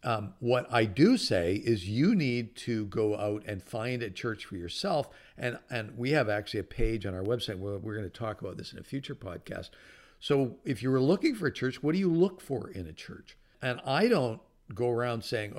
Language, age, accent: English, 50-69, American